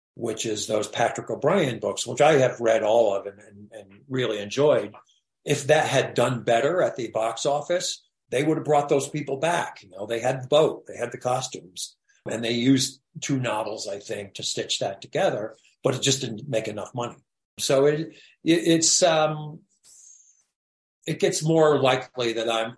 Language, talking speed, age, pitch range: English, 190 wpm, 50-69, 110-140 Hz